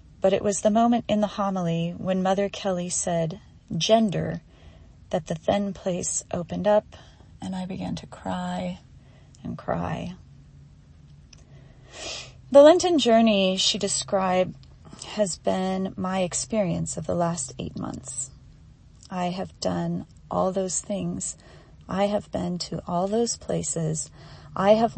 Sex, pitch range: female, 165-215 Hz